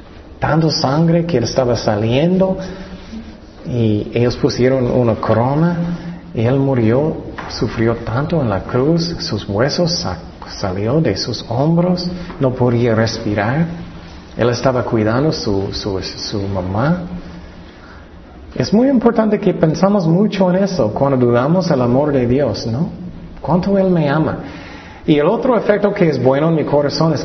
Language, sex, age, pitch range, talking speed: Spanish, male, 40-59, 115-175 Hz, 145 wpm